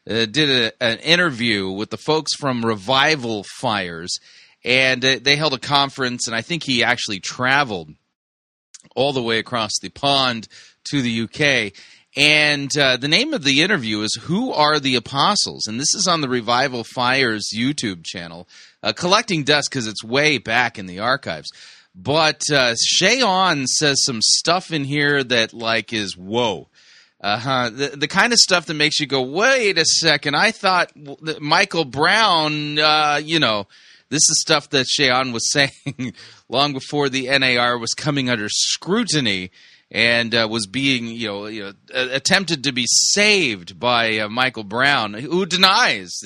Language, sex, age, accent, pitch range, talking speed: English, male, 30-49, American, 115-150 Hz, 165 wpm